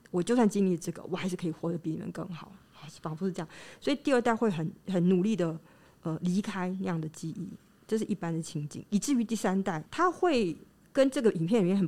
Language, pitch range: Chinese, 170-225 Hz